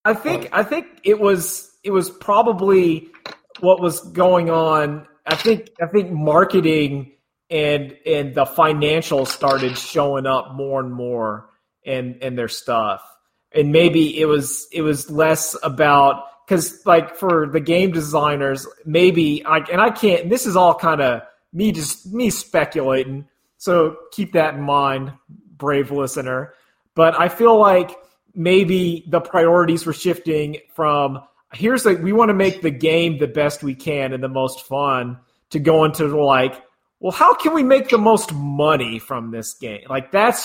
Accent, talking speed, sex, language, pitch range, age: American, 165 wpm, male, English, 135-175 Hz, 30-49